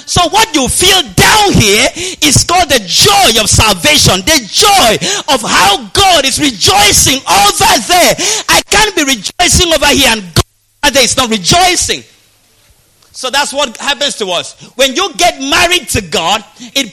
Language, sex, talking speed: English, male, 160 wpm